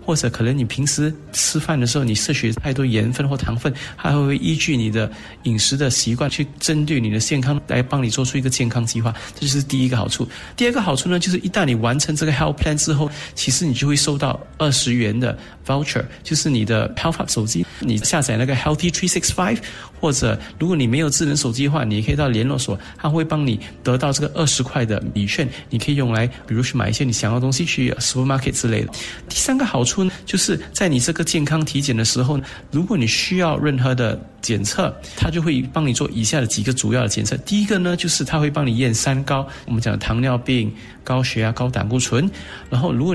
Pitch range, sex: 115-155 Hz, male